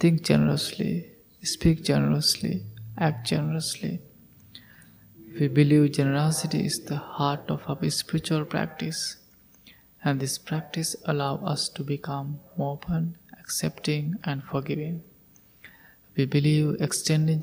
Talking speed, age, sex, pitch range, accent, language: 105 wpm, 20-39, male, 140-165 Hz, Indian, English